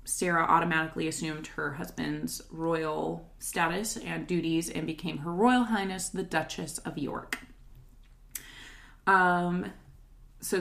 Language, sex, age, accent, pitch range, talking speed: English, female, 20-39, American, 165-205 Hz, 115 wpm